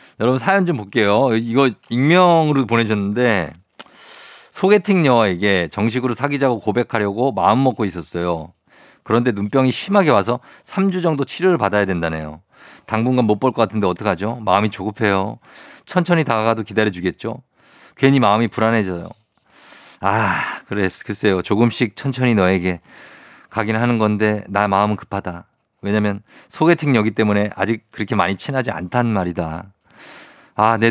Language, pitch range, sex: Korean, 100-130 Hz, male